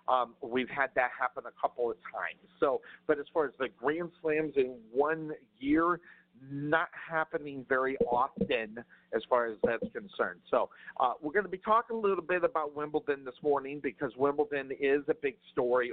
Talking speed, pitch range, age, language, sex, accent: 185 wpm, 120-160 Hz, 50-69, English, male, American